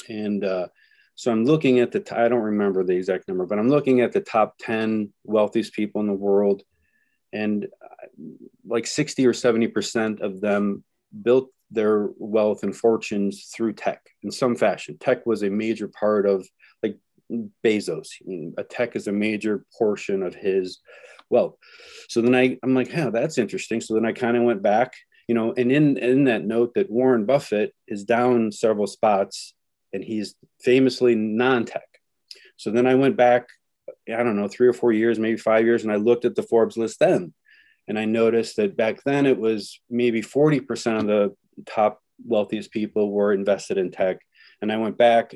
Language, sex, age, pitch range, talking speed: English, male, 30-49, 105-125 Hz, 190 wpm